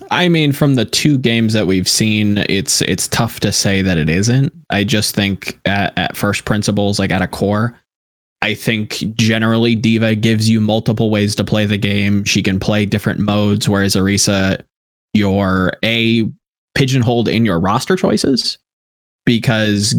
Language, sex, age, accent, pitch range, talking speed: English, male, 20-39, American, 105-130 Hz, 165 wpm